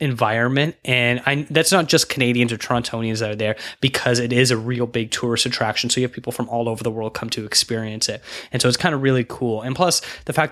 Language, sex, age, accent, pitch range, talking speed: English, male, 10-29, American, 110-125 Hz, 250 wpm